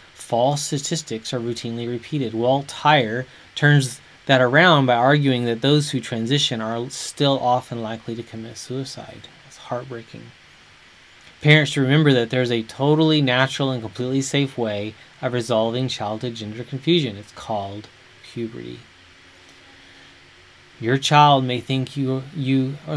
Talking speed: 135 wpm